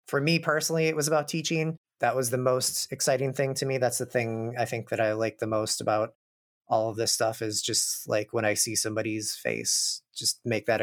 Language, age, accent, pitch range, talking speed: English, 30-49, American, 110-145 Hz, 225 wpm